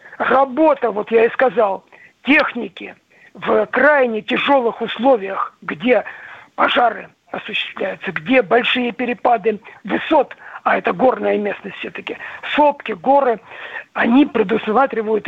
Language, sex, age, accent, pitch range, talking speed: Russian, male, 50-69, native, 220-265 Hz, 100 wpm